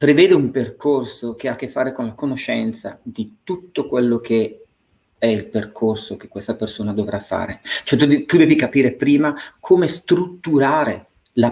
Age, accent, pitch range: 40-59, native, 110-155 Hz